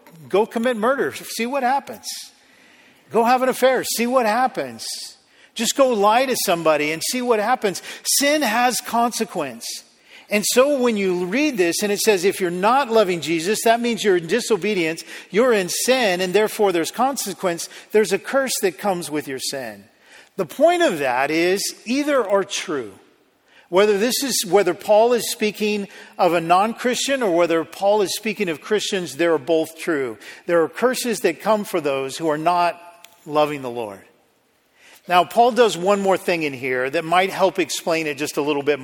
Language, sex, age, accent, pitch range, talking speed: English, male, 50-69, American, 170-235 Hz, 180 wpm